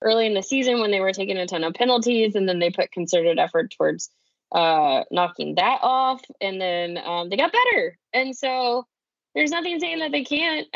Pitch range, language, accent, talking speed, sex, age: 180-245 Hz, English, American, 205 wpm, female, 20-39